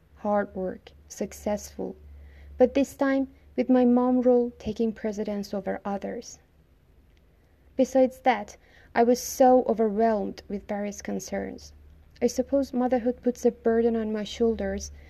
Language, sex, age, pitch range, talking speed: English, female, 20-39, 195-240 Hz, 125 wpm